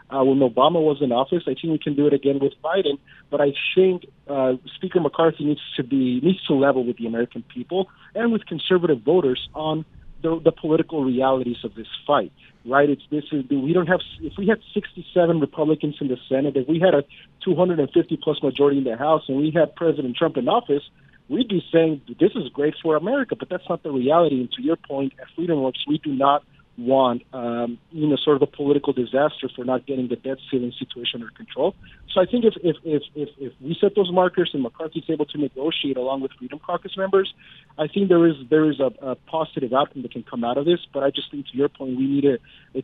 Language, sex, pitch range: English, male, 130-160 Hz